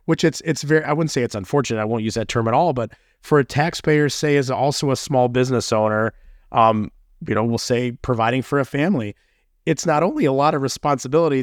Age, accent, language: 30-49, American, English